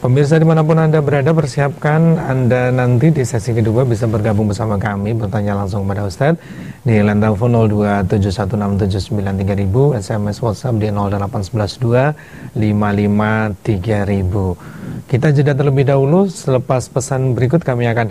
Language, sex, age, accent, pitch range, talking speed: Indonesian, male, 30-49, native, 105-130 Hz, 115 wpm